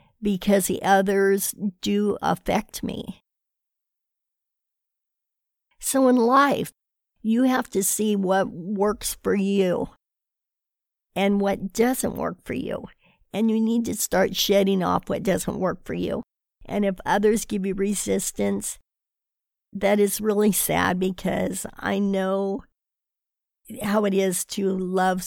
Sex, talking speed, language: female, 125 wpm, English